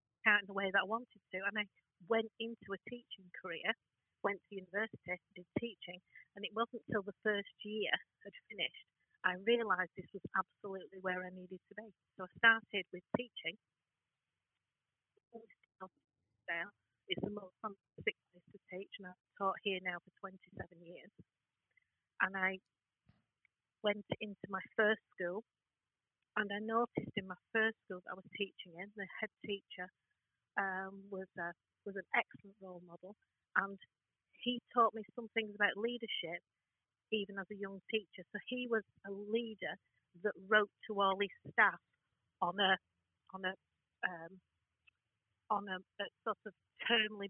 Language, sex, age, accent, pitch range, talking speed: English, female, 40-59, British, 185-215 Hz, 160 wpm